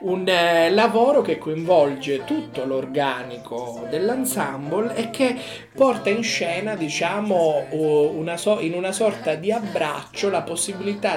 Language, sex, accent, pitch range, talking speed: Italian, male, native, 140-190 Hz, 115 wpm